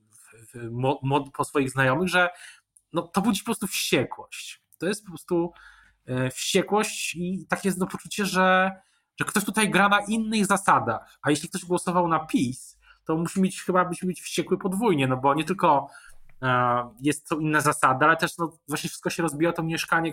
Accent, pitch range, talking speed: native, 135-180 Hz, 180 wpm